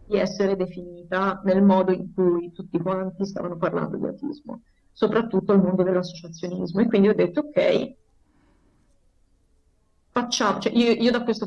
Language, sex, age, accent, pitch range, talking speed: Italian, female, 30-49, native, 185-220 Hz, 145 wpm